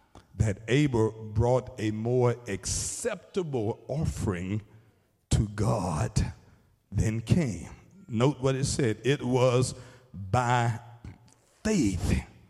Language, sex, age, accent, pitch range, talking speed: English, male, 50-69, American, 105-135 Hz, 90 wpm